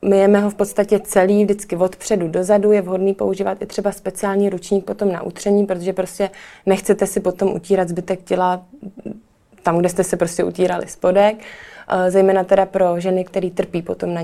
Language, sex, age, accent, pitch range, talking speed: Czech, female, 20-39, native, 185-210 Hz, 180 wpm